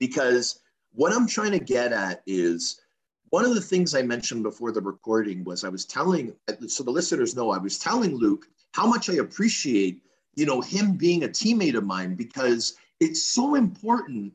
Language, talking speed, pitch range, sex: English, 190 wpm, 165-245 Hz, male